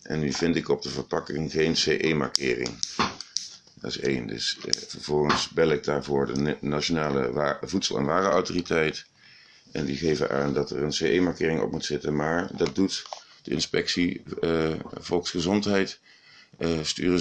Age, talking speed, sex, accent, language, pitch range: 50-69, 150 wpm, male, Dutch, Dutch, 75-90 Hz